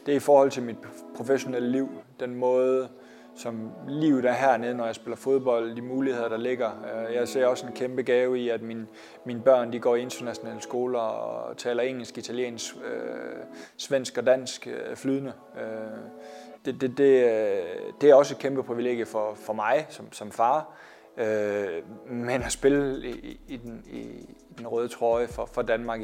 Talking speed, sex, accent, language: 175 wpm, male, native, Danish